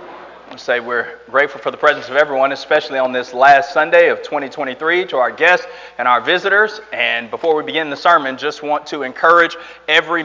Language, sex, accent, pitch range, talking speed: English, male, American, 145-180 Hz, 185 wpm